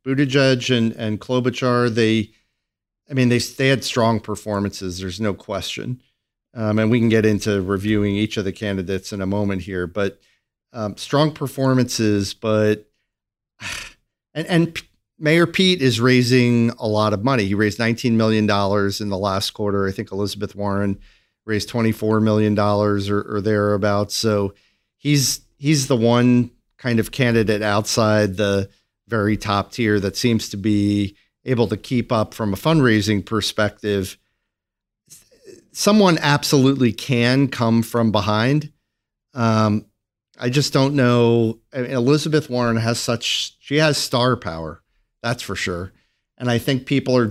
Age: 40-59